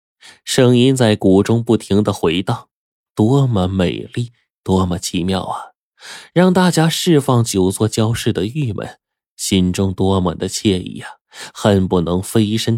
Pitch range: 95-120 Hz